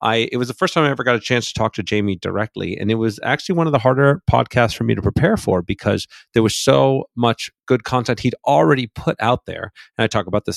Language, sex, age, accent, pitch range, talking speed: English, male, 40-59, American, 95-120 Hz, 260 wpm